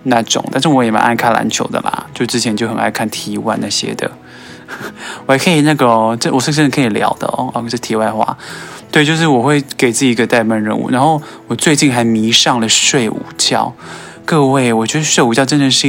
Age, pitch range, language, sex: 20-39, 115-140 Hz, Chinese, male